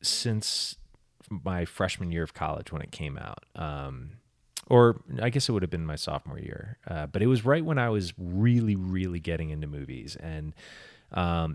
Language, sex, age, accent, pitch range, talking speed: English, male, 30-49, American, 75-95 Hz, 185 wpm